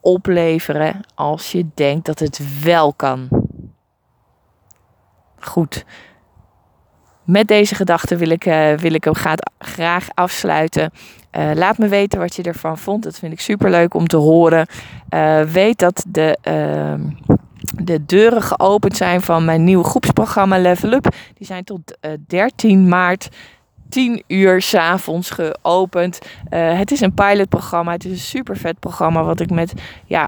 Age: 20-39